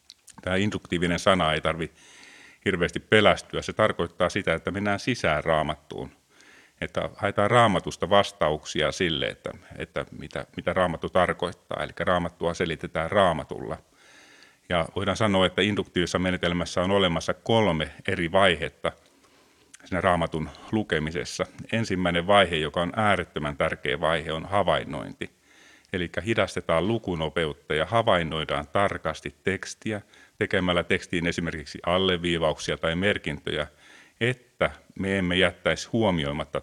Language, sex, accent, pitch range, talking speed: Finnish, male, native, 85-100 Hz, 110 wpm